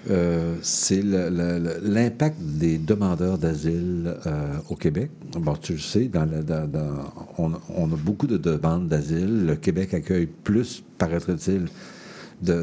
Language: French